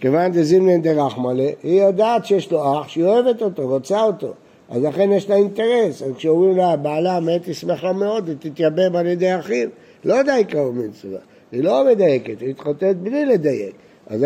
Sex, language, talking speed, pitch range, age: male, Hebrew, 175 wpm, 145-190 Hz, 60-79